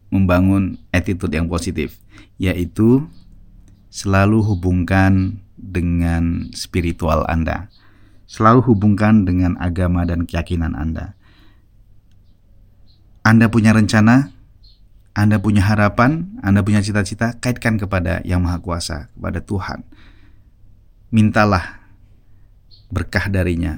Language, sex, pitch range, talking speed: Indonesian, male, 95-125 Hz, 90 wpm